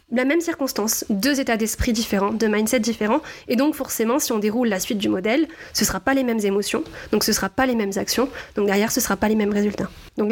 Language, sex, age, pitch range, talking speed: French, female, 30-49, 220-275 Hz, 260 wpm